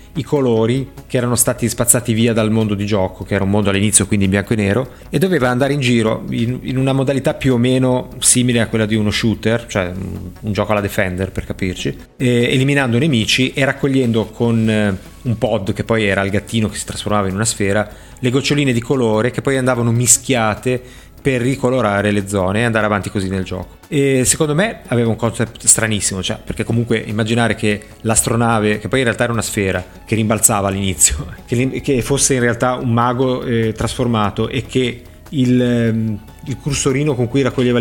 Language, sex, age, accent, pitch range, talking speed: Italian, male, 30-49, native, 105-125 Hz, 195 wpm